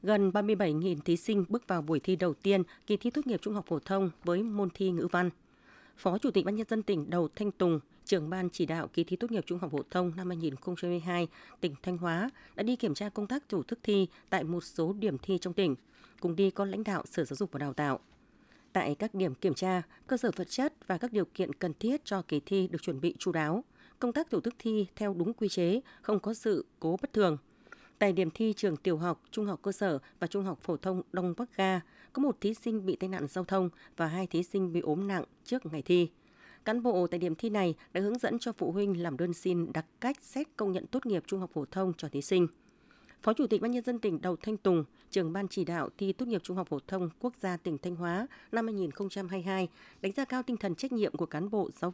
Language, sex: Vietnamese, female